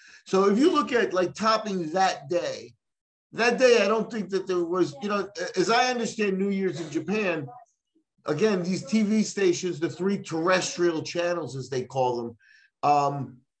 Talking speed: 170 wpm